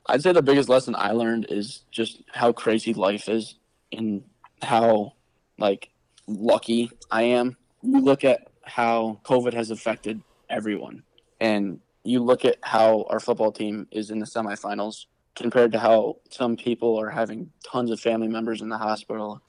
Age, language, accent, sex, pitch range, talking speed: 20-39, English, American, male, 105-120 Hz, 165 wpm